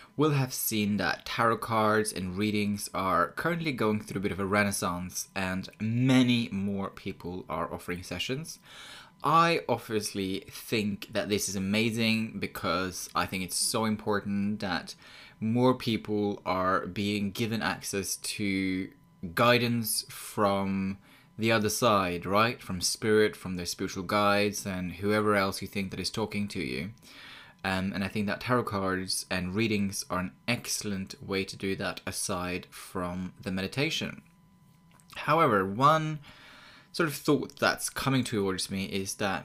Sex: male